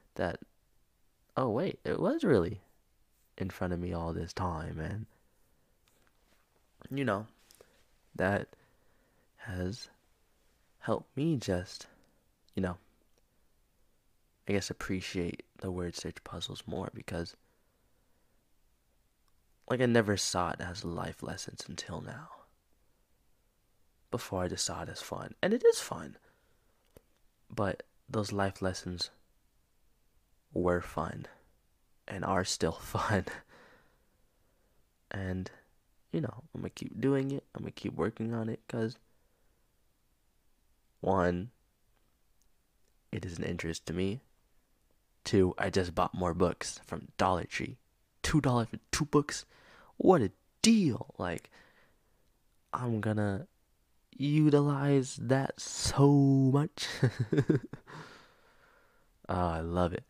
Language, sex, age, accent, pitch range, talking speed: English, male, 20-39, American, 90-125 Hz, 115 wpm